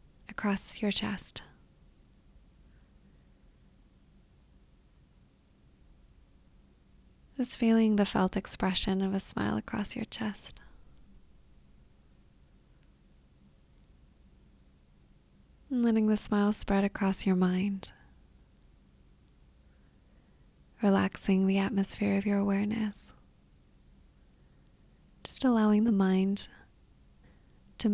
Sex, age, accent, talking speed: female, 20-39, American, 70 wpm